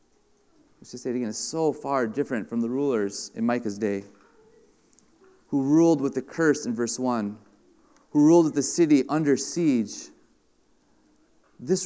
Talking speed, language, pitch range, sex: 155 wpm, English, 110-170 Hz, male